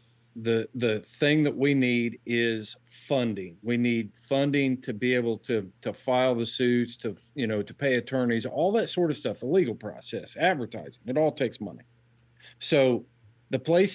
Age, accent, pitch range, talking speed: 50-69, American, 115-130 Hz, 175 wpm